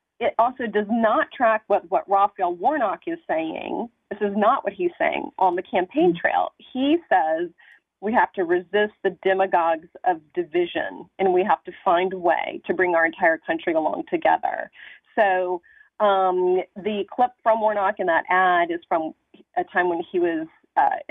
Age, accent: 30-49, American